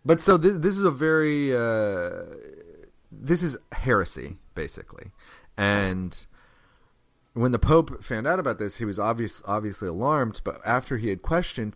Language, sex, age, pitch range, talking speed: English, male, 30-49, 90-130 Hz, 155 wpm